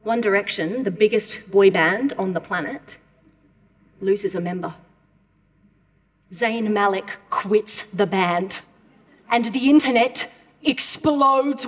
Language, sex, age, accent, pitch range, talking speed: French, female, 30-49, Australian, 215-290 Hz, 110 wpm